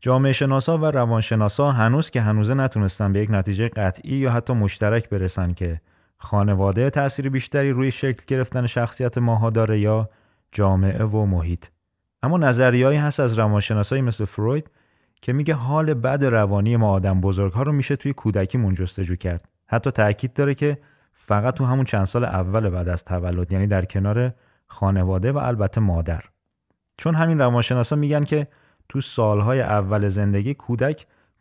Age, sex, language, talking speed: 30-49, male, Persian, 155 wpm